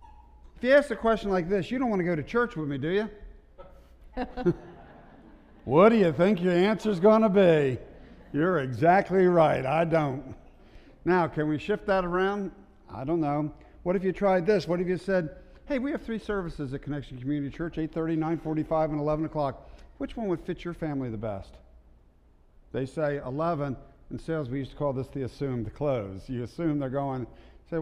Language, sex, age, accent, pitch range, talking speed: English, male, 50-69, American, 120-170 Hz, 195 wpm